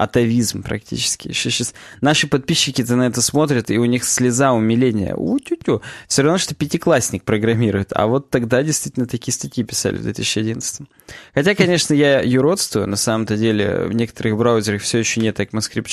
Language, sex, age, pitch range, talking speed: Russian, male, 20-39, 110-140 Hz, 160 wpm